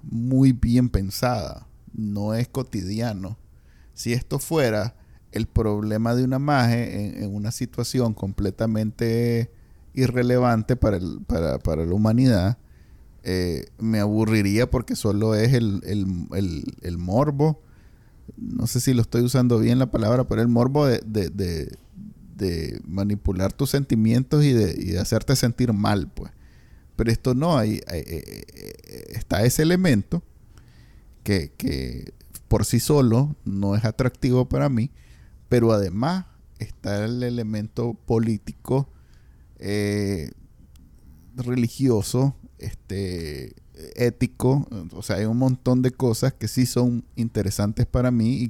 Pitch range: 100-125 Hz